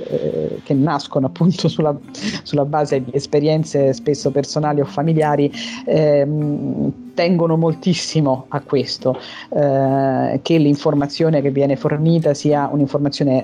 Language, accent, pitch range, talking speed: Italian, native, 140-165 Hz, 110 wpm